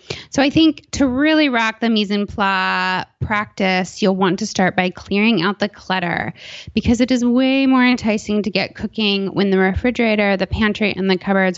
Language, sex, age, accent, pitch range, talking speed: English, female, 20-39, American, 185-240 Hz, 190 wpm